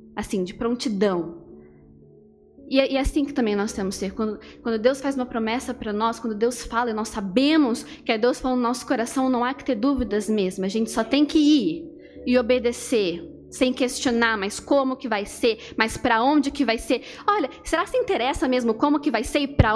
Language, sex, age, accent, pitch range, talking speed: Portuguese, female, 10-29, Brazilian, 235-320 Hz, 220 wpm